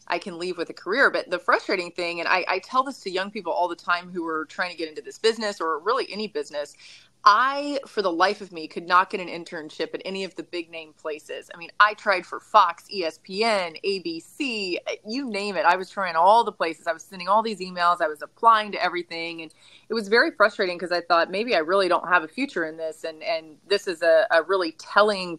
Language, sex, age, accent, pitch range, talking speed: English, female, 30-49, American, 165-210 Hz, 245 wpm